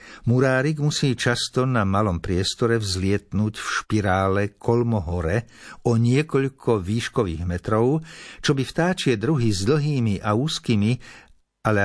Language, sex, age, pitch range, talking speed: Slovak, male, 60-79, 95-125 Hz, 115 wpm